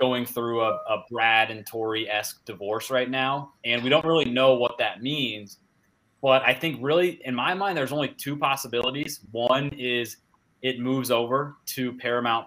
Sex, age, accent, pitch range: male, 20-39, American, 115-130 Hz